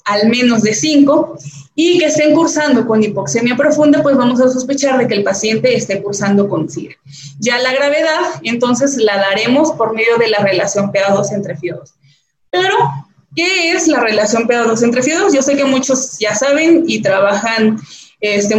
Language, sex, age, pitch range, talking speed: Spanish, female, 20-39, 205-290 Hz, 180 wpm